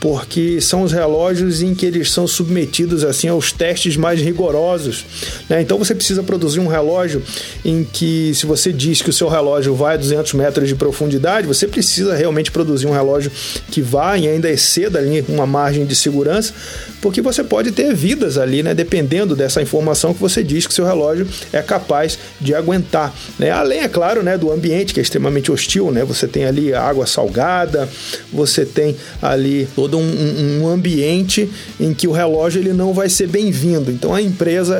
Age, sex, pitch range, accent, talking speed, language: 40-59, male, 140-170 Hz, Brazilian, 185 wpm, Portuguese